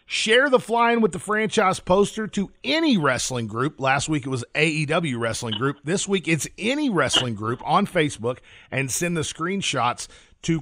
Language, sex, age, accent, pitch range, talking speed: English, male, 40-59, American, 125-185 Hz, 175 wpm